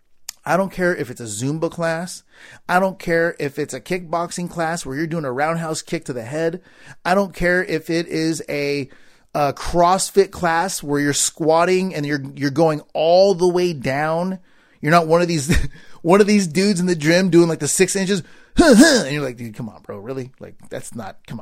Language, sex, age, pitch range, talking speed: English, male, 30-49, 135-185 Hz, 210 wpm